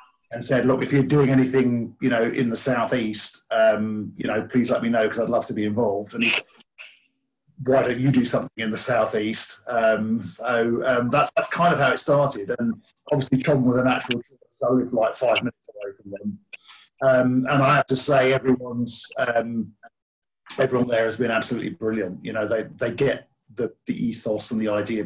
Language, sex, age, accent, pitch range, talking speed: English, male, 40-59, British, 110-130 Hz, 205 wpm